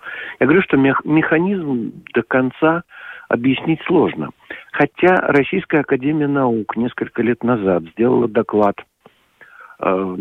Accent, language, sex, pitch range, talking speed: native, Russian, male, 100-140 Hz, 105 wpm